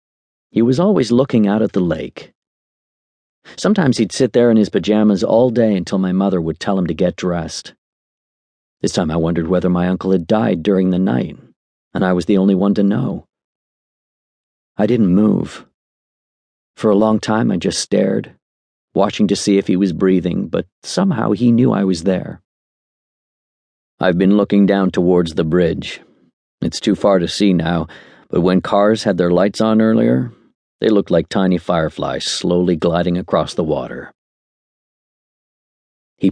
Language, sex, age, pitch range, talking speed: English, male, 40-59, 85-100 Hz, 170 wpm